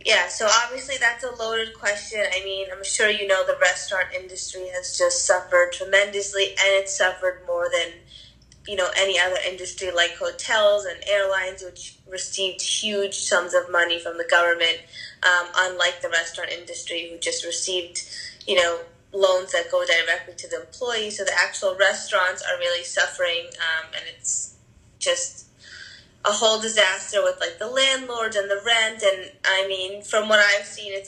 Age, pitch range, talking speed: 20-39, 175-205 Hz, 170 wpm